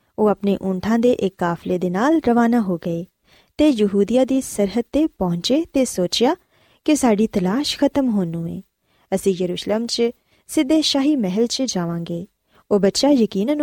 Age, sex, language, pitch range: 20-39, female, Punjabi, 190-270 Hz